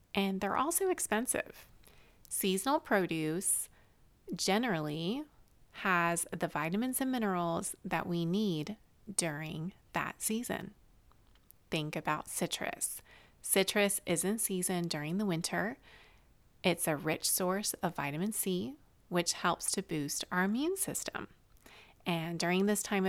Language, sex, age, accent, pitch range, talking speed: English, female, 30-49, American, 165-205 Hz, 120 wpm